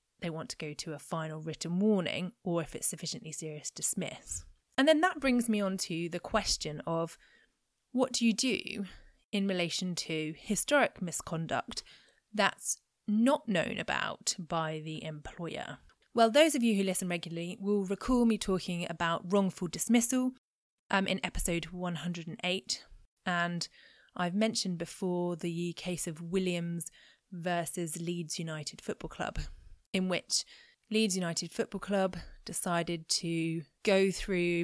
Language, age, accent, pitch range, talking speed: English, 20-39, British, 165-210 Hz, 140 wpm